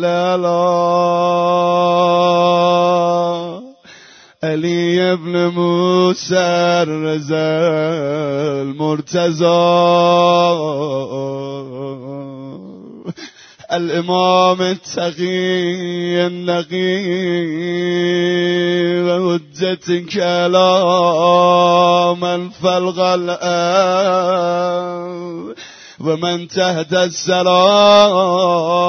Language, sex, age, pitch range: Persian, male, 30-49, 175-185 Hz